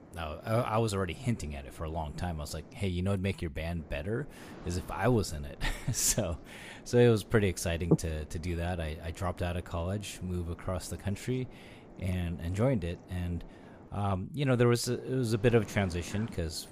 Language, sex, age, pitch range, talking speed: English, male, 30-49, 85-100 Hz, 235 wpm